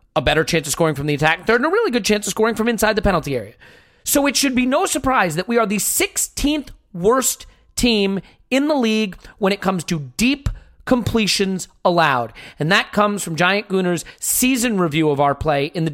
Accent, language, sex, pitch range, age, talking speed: American, English, male, 170-235 Hz, 30-49, 215 wpm